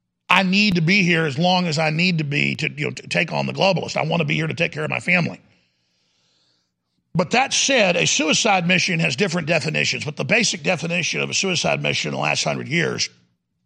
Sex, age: male, 50-69